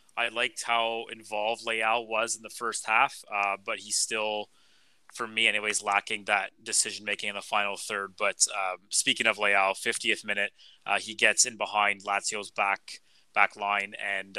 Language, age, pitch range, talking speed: English, 20-39, 105-115 Hz, 170 wpm